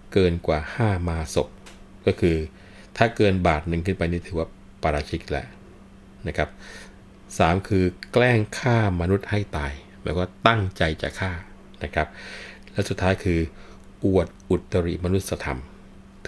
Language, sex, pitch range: Thai, male, 85-100 Hz